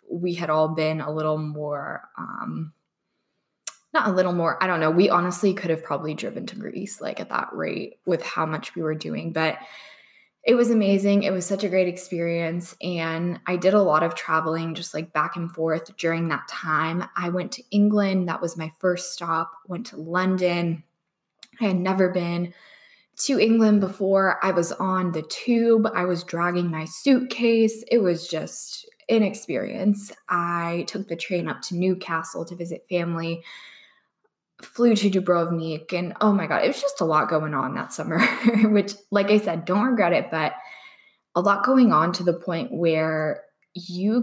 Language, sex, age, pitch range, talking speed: English, female, 20-39, 165-200 Hz, 180 wpm